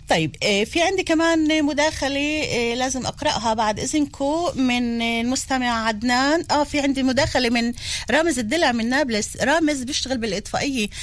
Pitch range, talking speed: 225-285 Hz, 140 wpm